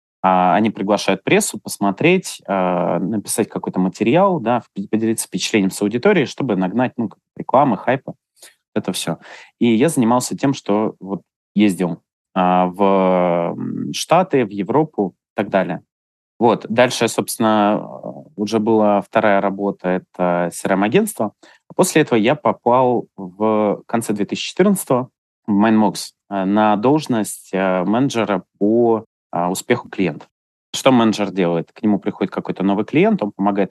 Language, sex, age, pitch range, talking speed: Russian, male, 20-39, 95-115 Hz, 120 wpm